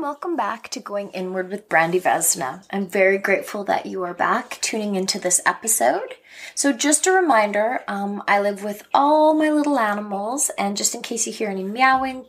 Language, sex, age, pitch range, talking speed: English, female, 20-39, 195-260 Hz, 190 wpm